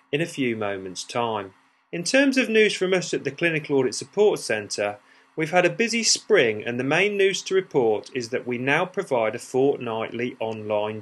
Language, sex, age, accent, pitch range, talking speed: English, male, 40-59, British, 120-180 Hz, 195 wpm